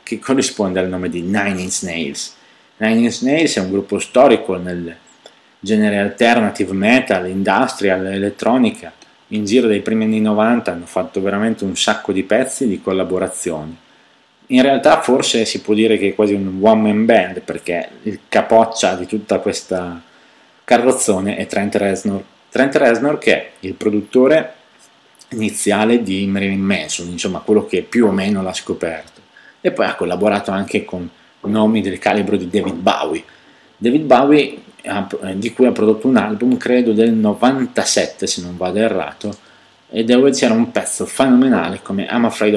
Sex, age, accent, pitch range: male, 30-49, native, 95-110 Hz